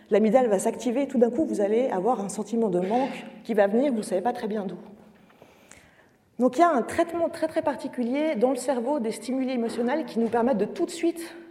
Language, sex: French, female